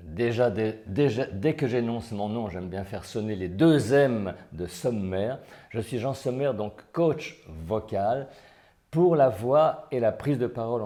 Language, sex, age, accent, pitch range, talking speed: French, male, 50-69, French, 105-140 Hz, 175 wpm